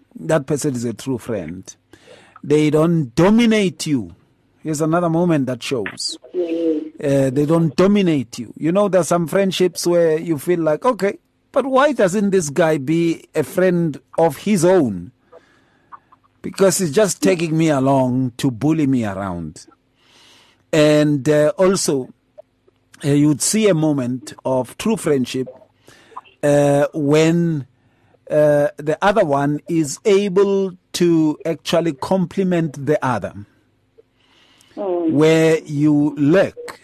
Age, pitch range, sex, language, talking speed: 50-69, 135-180 Hz, male, English, 125 wpm